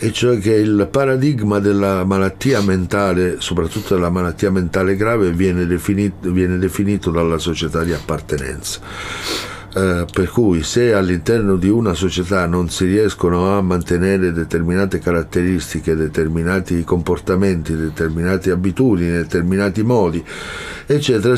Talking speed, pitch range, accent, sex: 120 wpm, 85-105 Hz, native, male